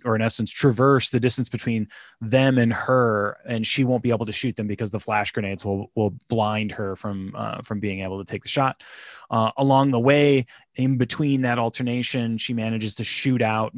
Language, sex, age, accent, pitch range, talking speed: English, male, 20-39, American, 110-130 Hz, 210 wpm